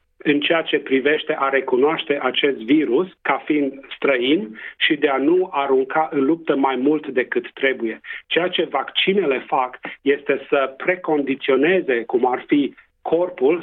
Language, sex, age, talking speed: Romanian, male, 40-59, 145 wpm